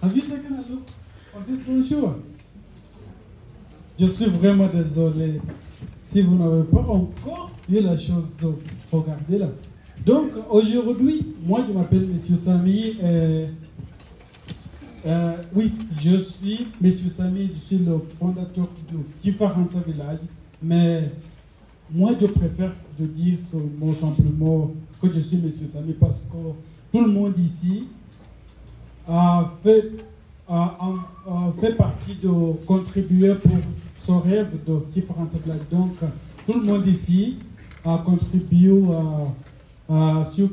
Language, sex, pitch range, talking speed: French, male, 160-190 Hz, 120 wpm